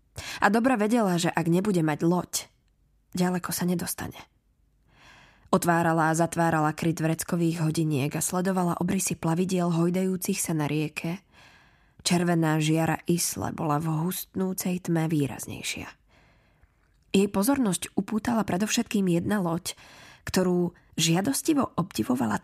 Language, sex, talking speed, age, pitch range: Slovak, female, 110 wpm, 20-39, 160-190 Hz